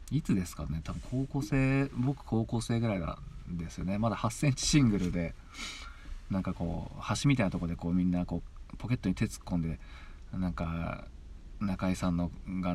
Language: Japanese